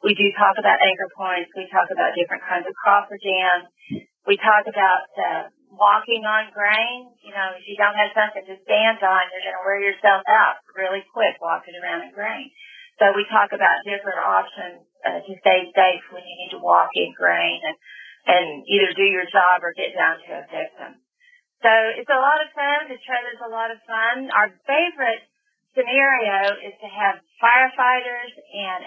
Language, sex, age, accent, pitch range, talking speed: English, female, 40-59, American, 195-240 Hz, 190 wpm